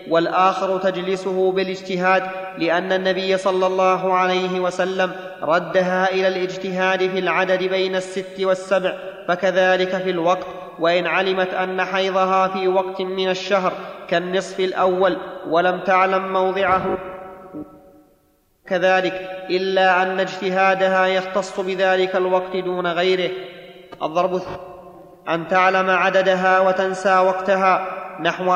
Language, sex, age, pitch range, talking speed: Arabic, male, 30-49, 185-190 Hz, 105 wpm